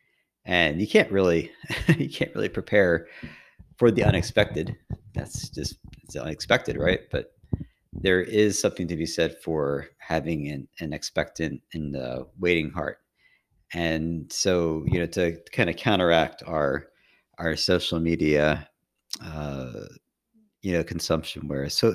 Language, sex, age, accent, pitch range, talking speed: English, male, 40-59, American, 70-85 Hz, 135 wpm